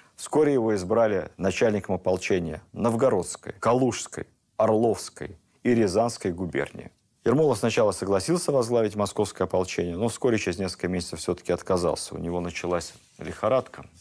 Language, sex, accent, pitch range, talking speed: Russian, male, native, 85-105 Hz, 120 wpm